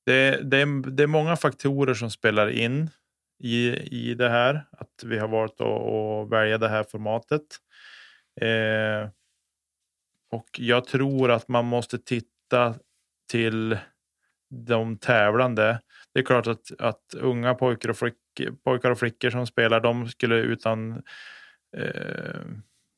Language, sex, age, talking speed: Swedish, male, 20-39, 135 wpm